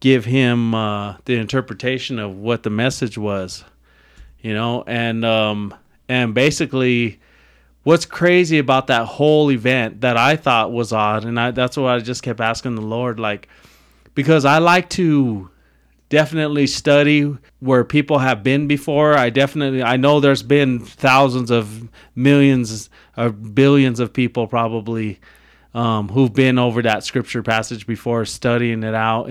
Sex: male